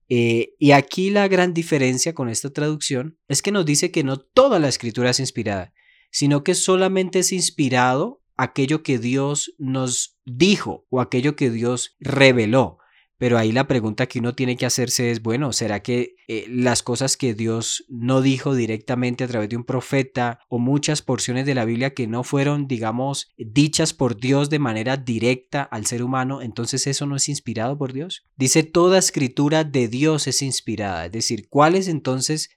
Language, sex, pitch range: Spanish, male, 120-150 Hz